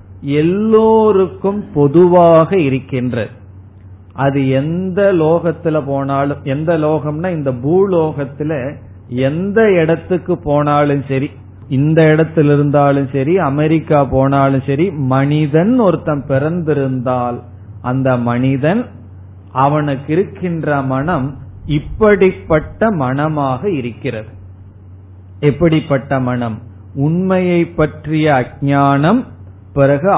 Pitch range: 130-175 Hz